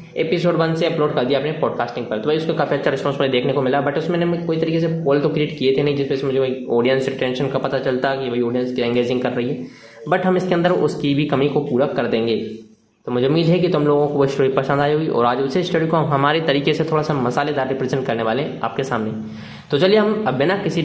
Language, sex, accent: Hindi, male, native